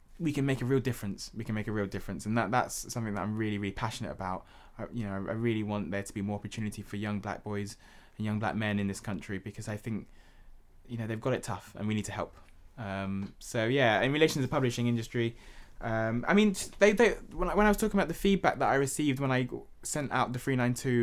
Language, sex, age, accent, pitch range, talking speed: English, male, 20-39, British, 100-125 Hz, 255 wpm